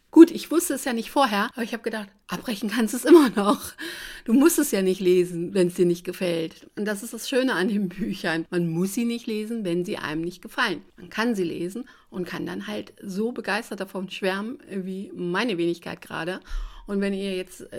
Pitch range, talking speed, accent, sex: 180-220 Hz, 225 wpm, German, female